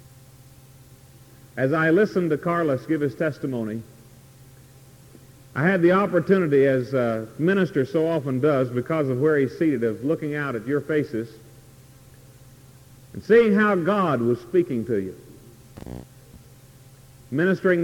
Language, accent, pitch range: English, American, 130-160 Hz